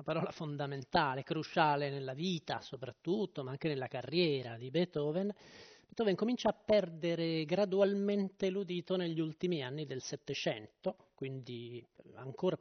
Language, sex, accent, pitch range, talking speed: Italian, male, native, 150-205 Hz, 125 wpm